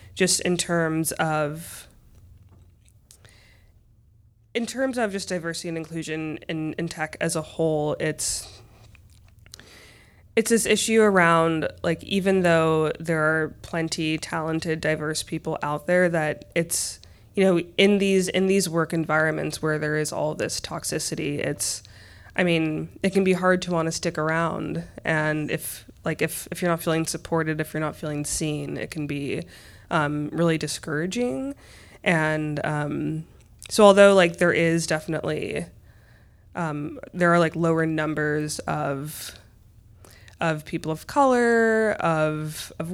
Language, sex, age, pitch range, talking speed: English, female, 20-39, 145-170 Hz, 145 wpm